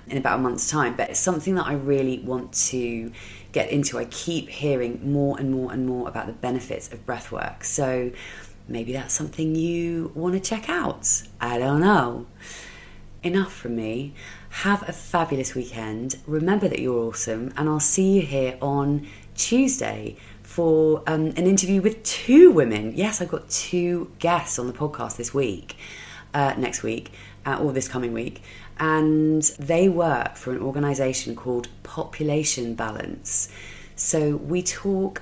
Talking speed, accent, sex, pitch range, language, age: 160 wpm, British, female, 120-155 Hz, English, 30-49